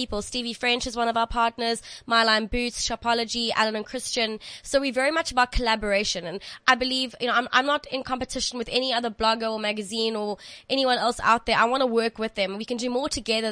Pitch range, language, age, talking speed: 215-250 Hz, English, 20-39, 230 wpm